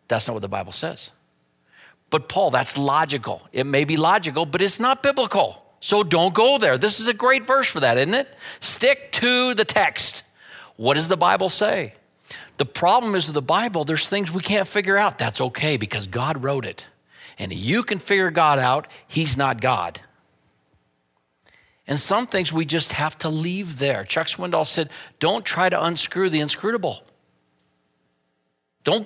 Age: 50-69